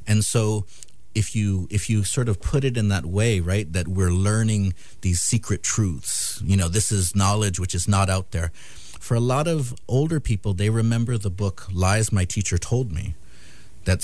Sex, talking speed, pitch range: male, 195 wpm, 90-110 Hz